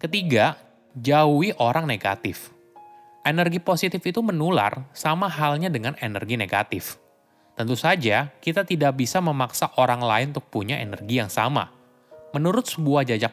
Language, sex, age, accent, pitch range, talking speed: Indonesian, male, 20-39, native, 115-165 Hz, 130 wpm